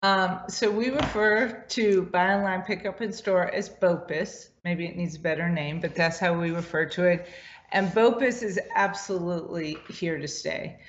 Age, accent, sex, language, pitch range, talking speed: 40-59, American, female, English, 170-195 Hz, 180 wpm